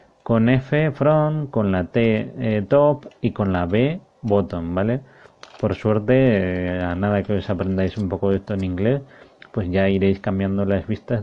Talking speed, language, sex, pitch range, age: 180 wpm, English, male, 100-125 Hz, 30-49